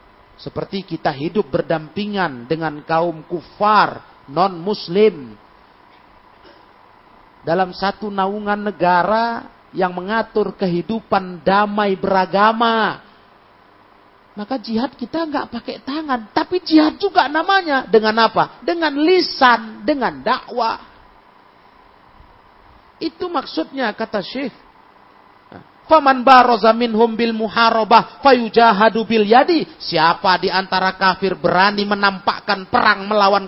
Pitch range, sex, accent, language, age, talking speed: 145-230 Hz, male, native, Indonesian, 40-59, 95 wpm